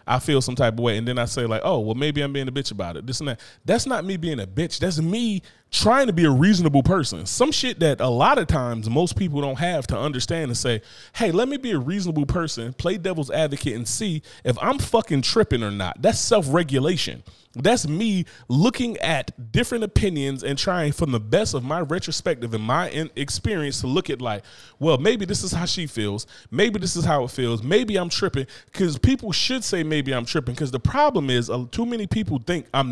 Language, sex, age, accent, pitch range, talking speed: English, male, 30-49, American, 130-185 Hz, 230 wpm